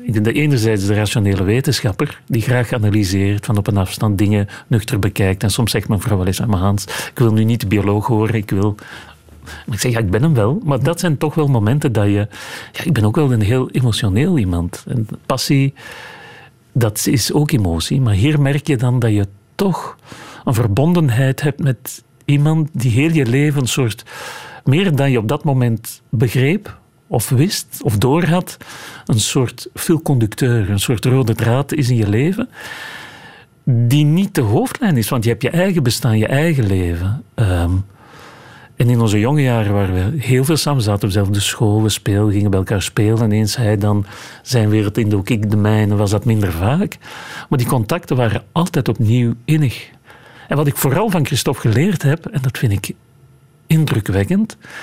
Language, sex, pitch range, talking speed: Dutch, male, 105-145 Hz, 195 wpm